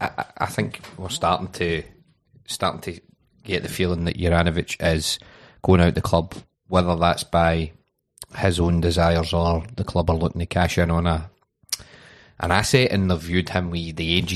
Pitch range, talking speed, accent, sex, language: 85-105 Hz, 175 wpm, British, male, English